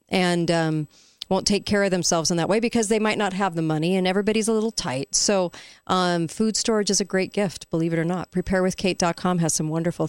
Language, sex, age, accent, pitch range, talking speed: English, female, 40-59, American, 160-200 Hz, 225 wpm